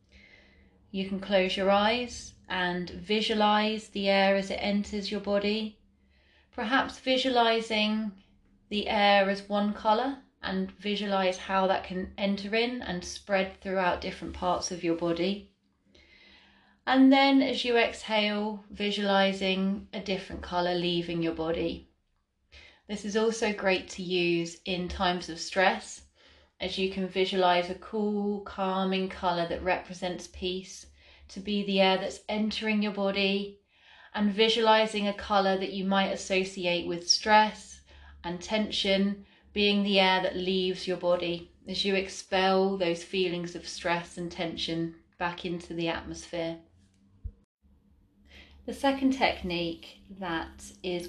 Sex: female